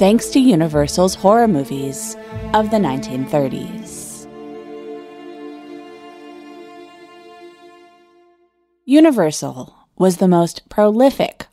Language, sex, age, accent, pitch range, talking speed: English, female, 20-39, American, 145-210 Hz, 70 wpm